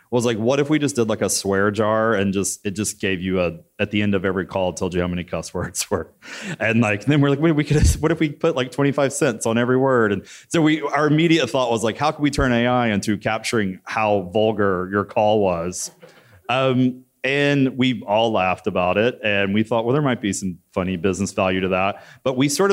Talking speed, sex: 250 wpm, male